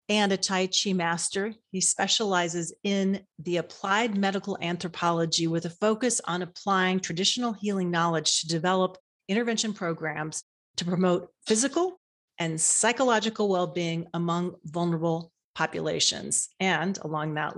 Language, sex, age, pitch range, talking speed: English, female, 40-59, 165-200 Hz, 125 wpm